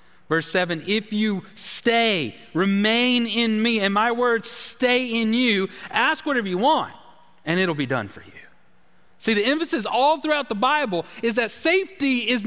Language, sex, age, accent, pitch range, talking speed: English, male, 30-49, American, 200-285 Hz, 170 wpm